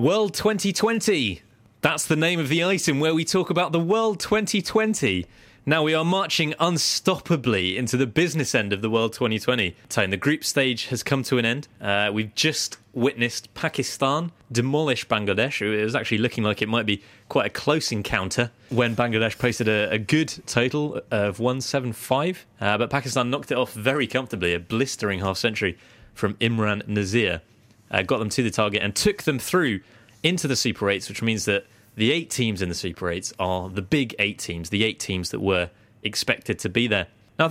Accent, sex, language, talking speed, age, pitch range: British, male, English, 195 wpm, 20-39, 105-145 Hz